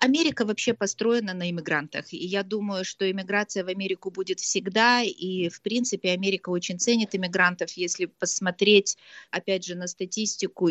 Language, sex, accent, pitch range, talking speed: Russian, female, native, 165-190 Hz, 150 wpm